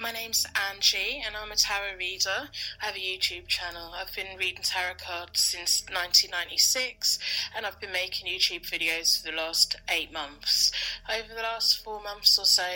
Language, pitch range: English, 165-190 Hz